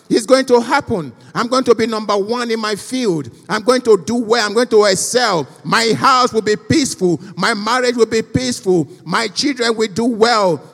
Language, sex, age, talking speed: English, male, 50-69, 205 wpm